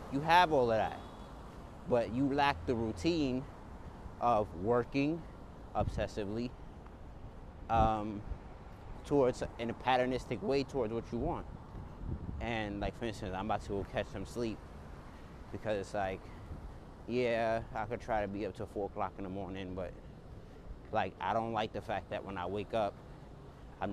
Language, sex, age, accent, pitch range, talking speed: English, male, 30-49, American, 90-115 Hz, 160 wpm